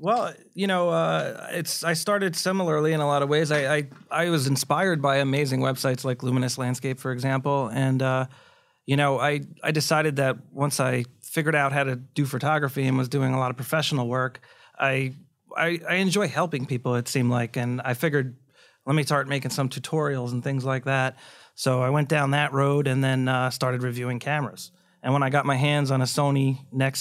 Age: 30-49